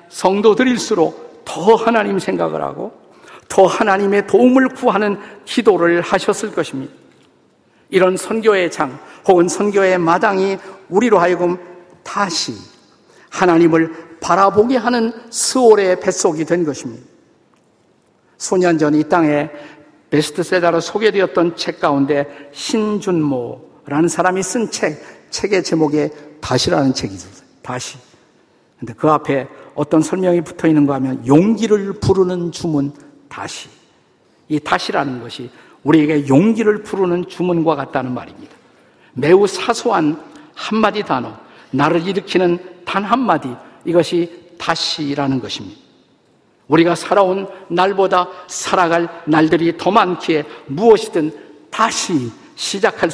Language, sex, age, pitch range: Korean, male, 50-69, 150-195 Hz